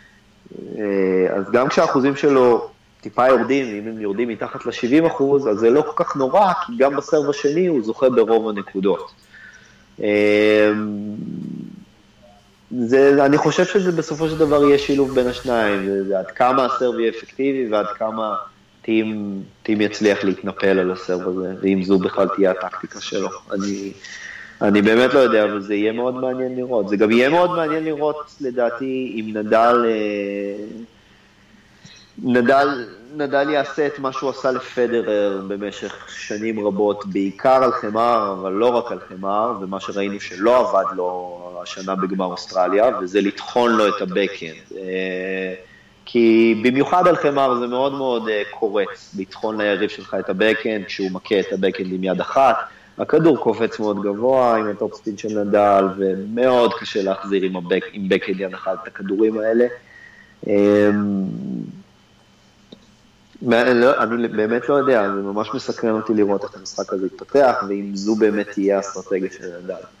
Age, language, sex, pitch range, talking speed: 30-49, Hebrew, male, 100-130 Hz, 145 wpm